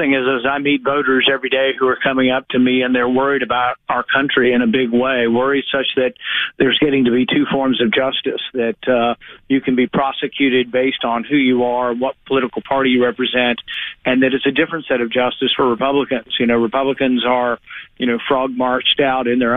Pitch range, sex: 125-135 Hz, male